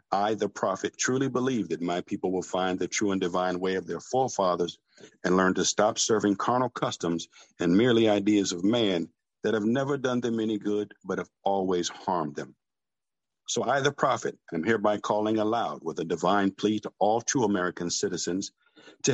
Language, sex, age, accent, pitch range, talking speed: English, male, 50-69, American, 95-115 Hz, 190 wpm